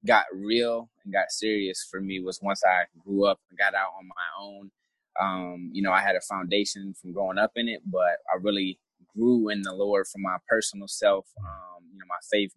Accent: American